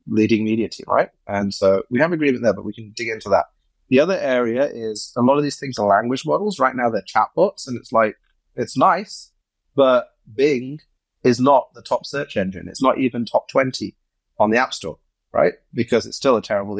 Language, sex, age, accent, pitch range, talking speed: English, male, 30-49, British, 105-125 Hz, 215 wpm